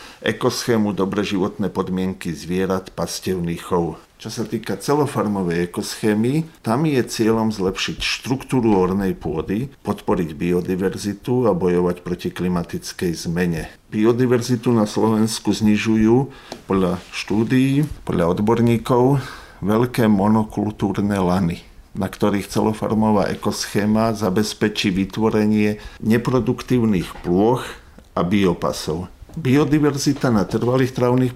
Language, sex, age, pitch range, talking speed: Slovak, male, 50-69, 95-120 Hz, 100 wpm